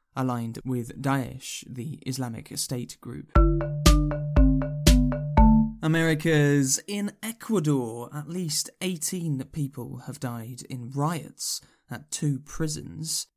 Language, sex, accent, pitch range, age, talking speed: English, male, British, 130-155 Hz, 10-29, 95 wpm